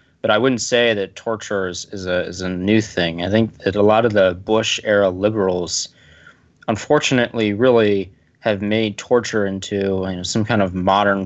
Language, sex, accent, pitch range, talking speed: English, male, American, 95-115 Hz, 180 wpm